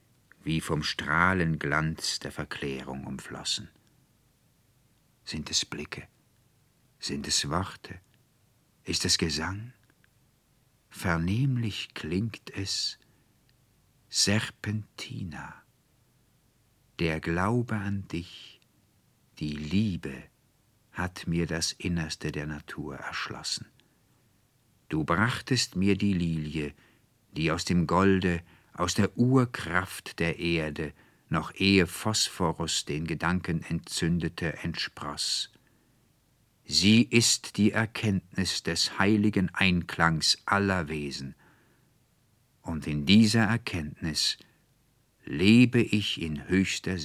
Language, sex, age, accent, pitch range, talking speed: German, male, 50-69, German, 85-115 Hz, 90 wpm